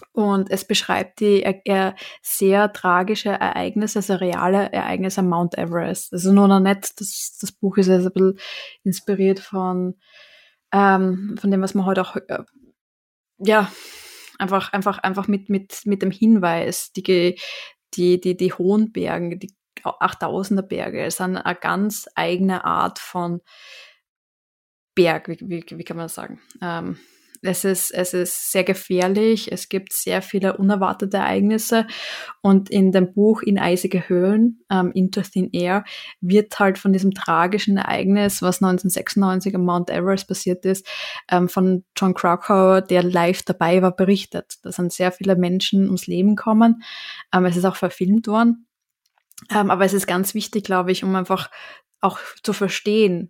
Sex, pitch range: female, 185-205 Hz